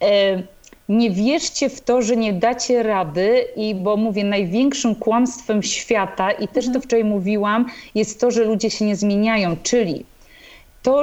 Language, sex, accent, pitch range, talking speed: Polish, female, native, 220-275 Hz, 150 wpm